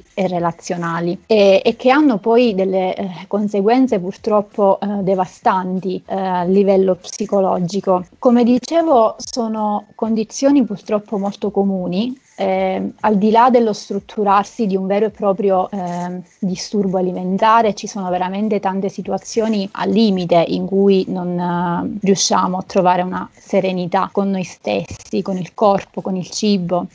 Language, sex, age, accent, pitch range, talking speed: Italian, female, 30-49, native, 185-210 Hz, 140 wpm